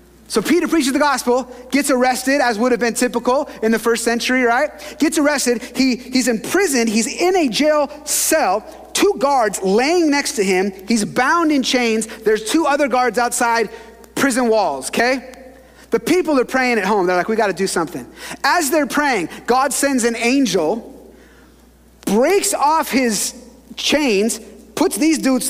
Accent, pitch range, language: American, 220-280 Hz, English